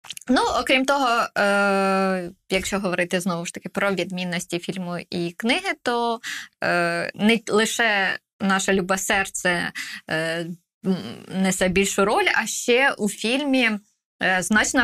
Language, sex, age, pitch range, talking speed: Ukrainian, female, 20-39, 185-225 Hz, 110 wpm